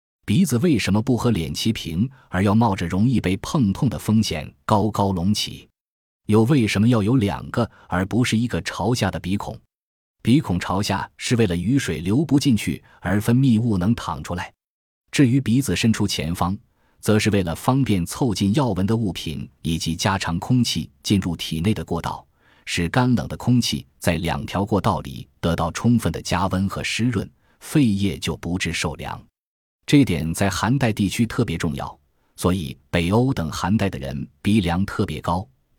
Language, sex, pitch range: Chinese, male, 85-115 Hz